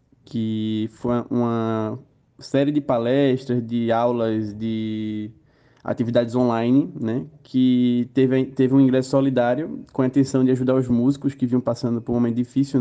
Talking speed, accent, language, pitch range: 150 wpm, Brazilian, Portuguese, 125-145 Hz